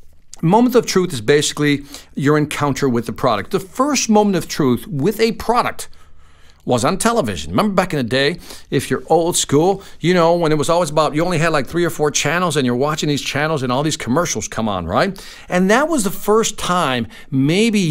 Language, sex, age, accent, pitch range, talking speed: English, male, 50-69, American, 125-190 Hz, 215 wpm